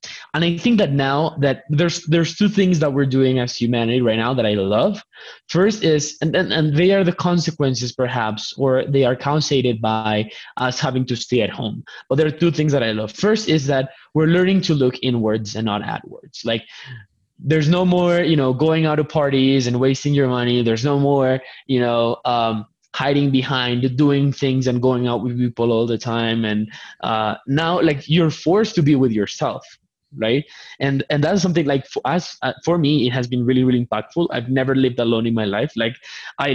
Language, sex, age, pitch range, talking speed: English, male, 20-39, 120-155 Hz, 210 wpm